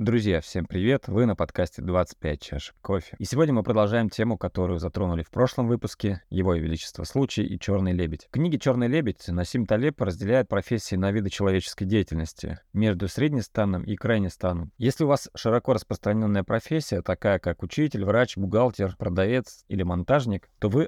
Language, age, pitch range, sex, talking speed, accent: Russian, 20-39, 95-120 Hz, male, 165 wpm, native